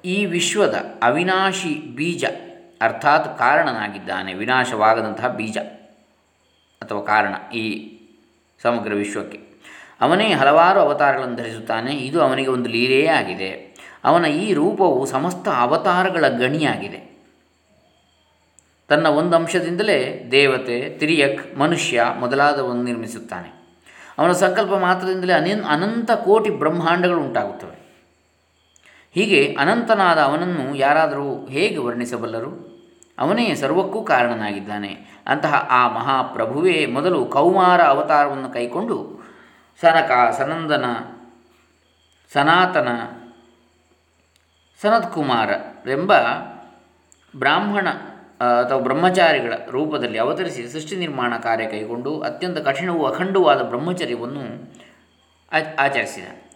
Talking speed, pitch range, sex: 80 wpm, 105-160 Hz, male